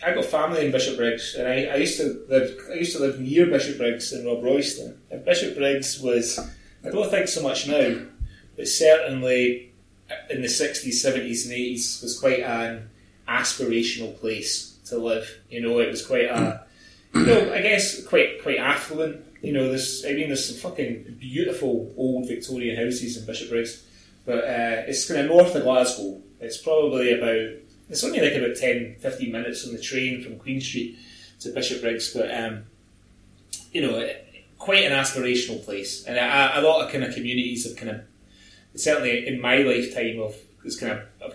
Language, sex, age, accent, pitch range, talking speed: English, male, 20-39, British, 115-130 Hz, 185 wpm